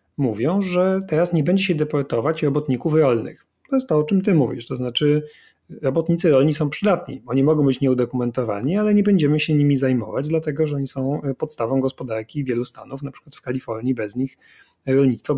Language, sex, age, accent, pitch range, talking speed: Polish, male, 40-59, native, 120-155 Hz, 185 wpm